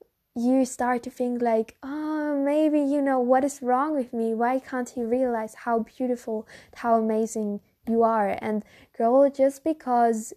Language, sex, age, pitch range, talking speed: English, female, 10-29, 220-260 Hz, 160 wpm